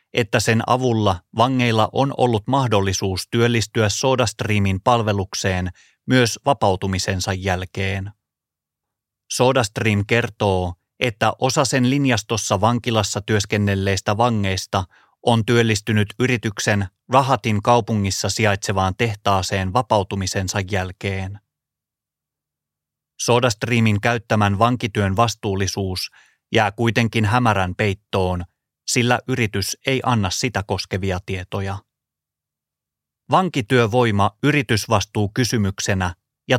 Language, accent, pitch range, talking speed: Finnish, native, 100-120 Hz, 85 wpm